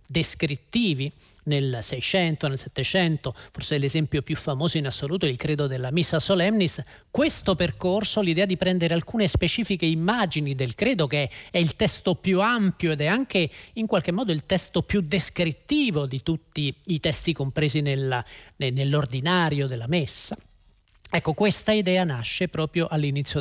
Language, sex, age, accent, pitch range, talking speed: Italian, male, 40-59, native, 145-200 Hz, 150 wpm